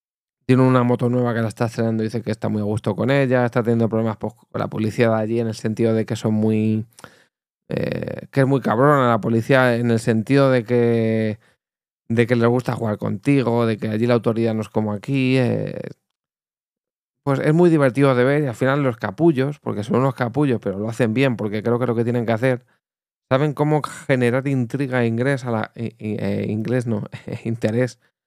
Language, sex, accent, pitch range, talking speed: Spanish, male, Spanish, 110-130 Hz, 215 wpm